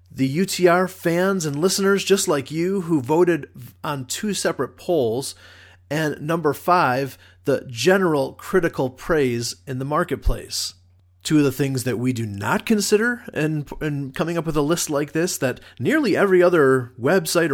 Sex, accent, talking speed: male, American, 160 wpm